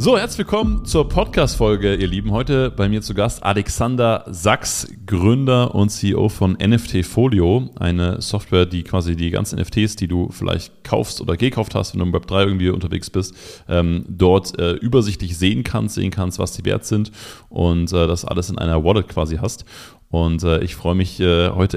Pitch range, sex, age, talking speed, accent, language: 90-105 Hz, male, 30-49, 175 wpm, German, German